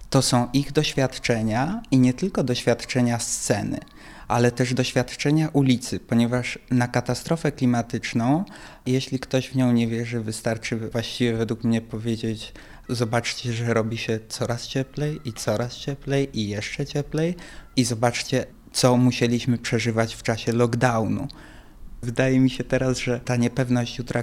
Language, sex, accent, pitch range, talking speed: Polish, male, native, 120-140 Hz, 140 wpm